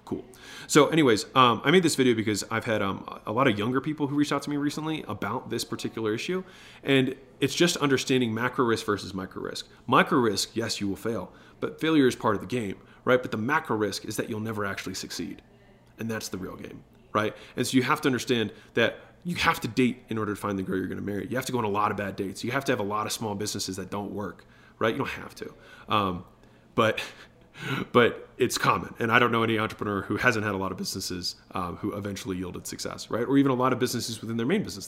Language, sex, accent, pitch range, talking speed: English, male, American, 105-135 Hz, 255 wpm